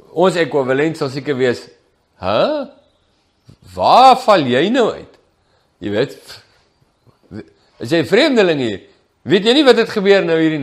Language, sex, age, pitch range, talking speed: English, male, 50-69, 140-200 Hz, 145 wpm